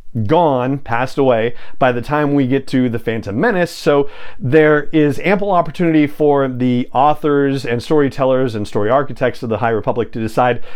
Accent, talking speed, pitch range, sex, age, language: American, 175 wpm, 120-155 Hz, male, 40-59, English